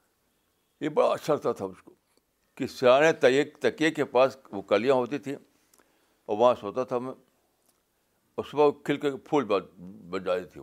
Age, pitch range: 60-79, 110-150 Hz